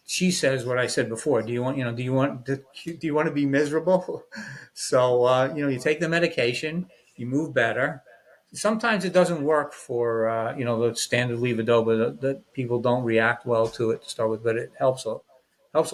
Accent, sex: American, male